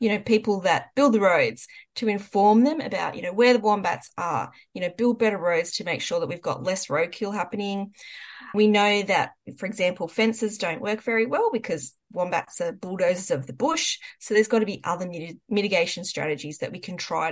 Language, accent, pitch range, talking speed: English, Australian, 175-230 Hz, 210 wpm